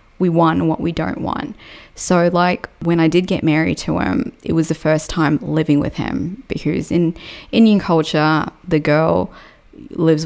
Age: 20-39